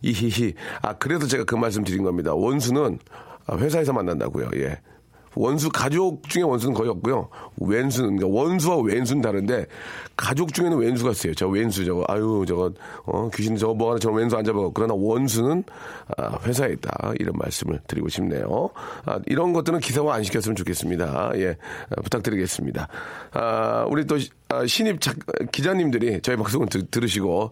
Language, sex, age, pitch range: Korean, male, 40-59, 100-140 Hz